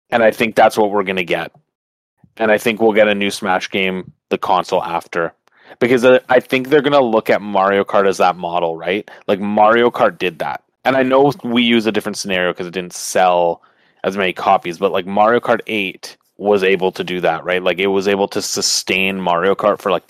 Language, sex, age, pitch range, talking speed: English, male, 30-49, 90-110 Hz, 225 wpm